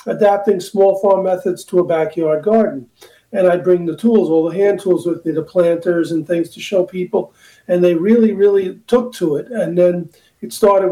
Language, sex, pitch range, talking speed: English, male, 165-195 Hz, 205 wpm